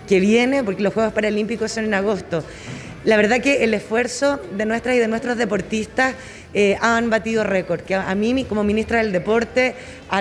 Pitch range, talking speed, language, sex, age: 210-255 Hz, 195 wpm, Spanish, female, 30-49